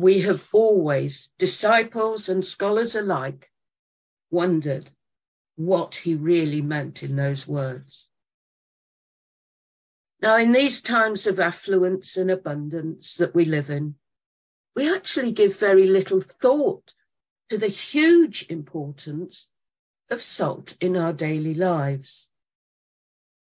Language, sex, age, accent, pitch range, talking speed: English, female, 50-69, British, 150-205 Hz, 110 wpm